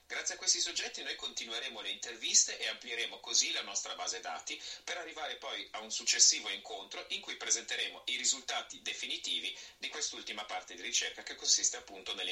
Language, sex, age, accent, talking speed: Italian, male, 30-49, native, 180 wpm